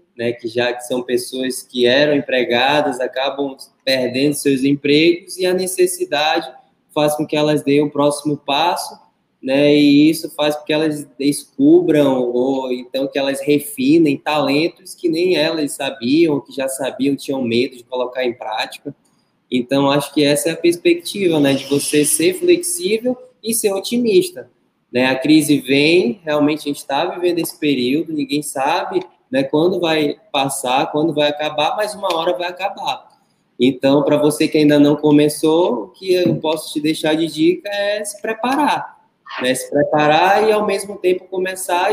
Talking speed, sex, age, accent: 170 wpm, male, 20-39, Brazilian